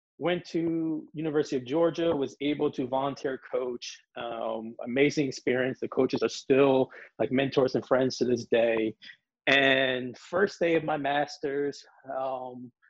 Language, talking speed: English, 145 wpm